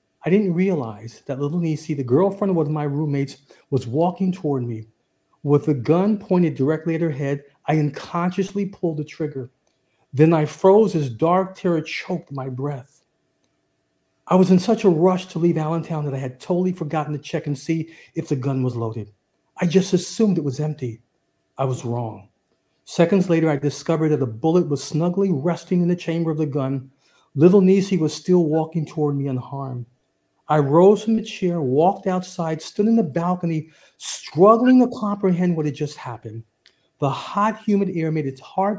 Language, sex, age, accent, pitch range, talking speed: English, male, 50-69, American, 140-180 Hz, 185 wpm